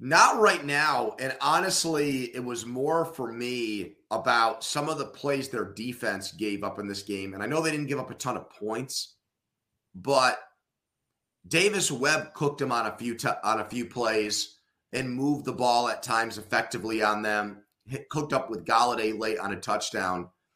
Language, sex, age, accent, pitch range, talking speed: English, male, 30-49, American, 110-145 Hz, 185 wpm